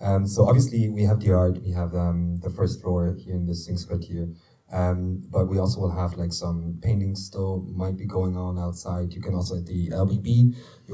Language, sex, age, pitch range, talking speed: English, male, 30-49, 85-105 Hz, 220 wpm